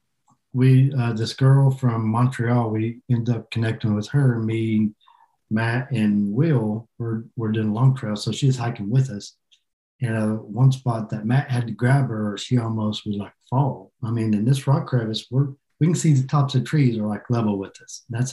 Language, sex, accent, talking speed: English, male, American, 200 wpm